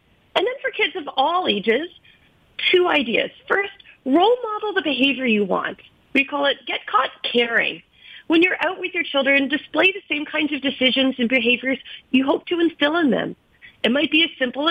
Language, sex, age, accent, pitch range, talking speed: English, female, 30-49, American, 235-320 Hz, 190 wpm